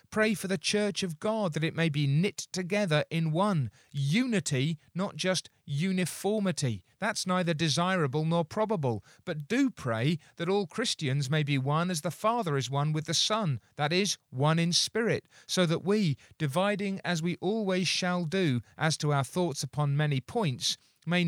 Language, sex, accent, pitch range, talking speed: English, male, British, 140-195 Hz, 175 wpm